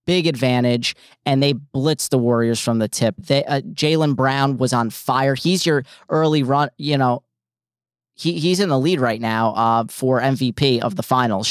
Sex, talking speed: male, 190 wpm